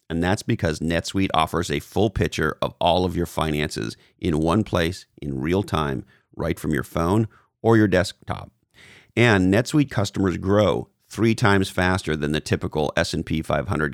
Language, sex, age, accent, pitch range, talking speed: English, male, 40-59, American, 85-105 Hz, 165 wpm